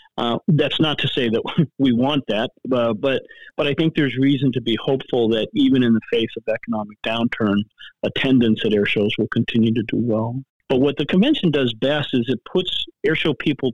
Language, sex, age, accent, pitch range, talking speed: English, male, 40-59, American, 115-140 Hz, 200 wpm